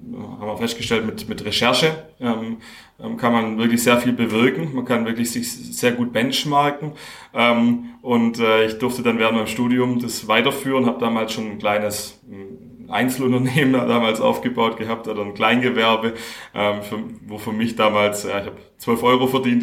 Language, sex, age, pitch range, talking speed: German, male, 30-49, 110-125 Hz, 170 wpm